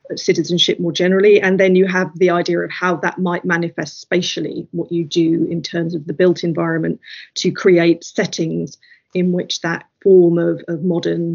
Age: 30-49